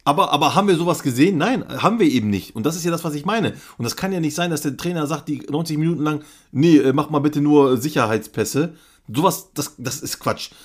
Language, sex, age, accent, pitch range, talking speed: German, male, 40-59, German, 130-165 Hz, 250 wpm